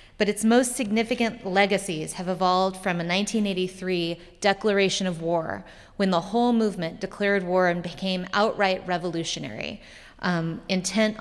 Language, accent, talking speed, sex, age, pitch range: English, American, 135 wpm, female, 30-49, 175-205 Hz